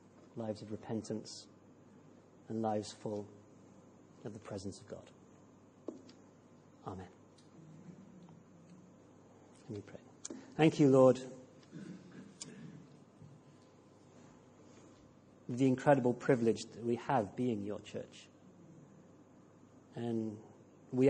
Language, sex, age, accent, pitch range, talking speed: English, male, 40-59, British, 110-130 Hz, 80 wpm